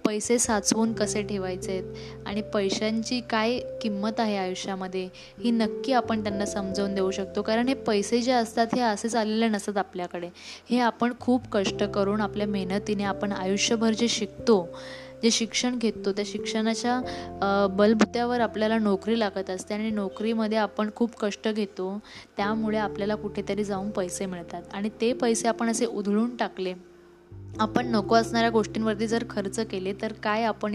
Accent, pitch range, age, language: native, 195-230 Hz, 10-29, Marathi